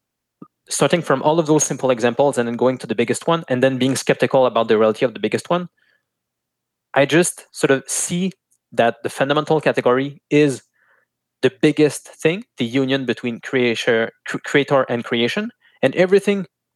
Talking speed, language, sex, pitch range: 170 wpm, English, male, 120-155 Hz